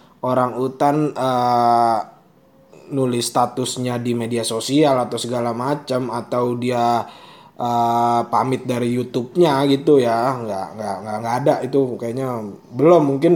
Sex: male